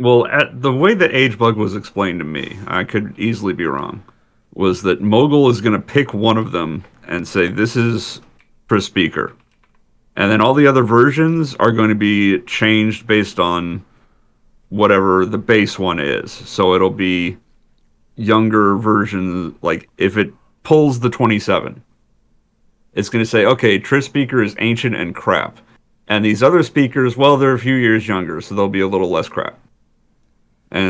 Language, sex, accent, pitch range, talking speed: English, male, American, 95-120 Hz, 175 wpm